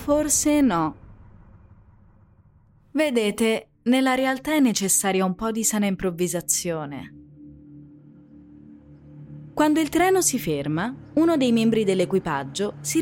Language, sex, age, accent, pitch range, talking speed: Italian, female, 20-39, native, 145-235 Hz, 100 wpm